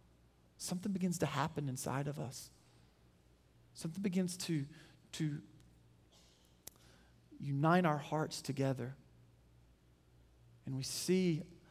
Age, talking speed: 40-59, 90 wpm